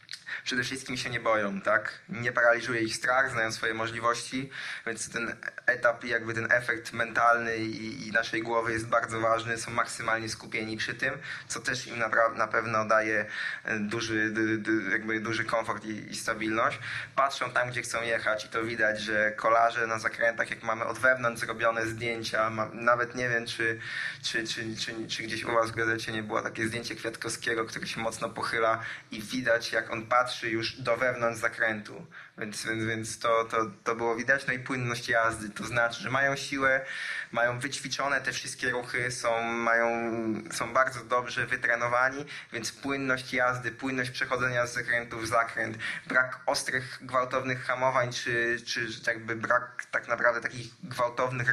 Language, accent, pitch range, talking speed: Polish, native, 115-125 Hz, 175 wpm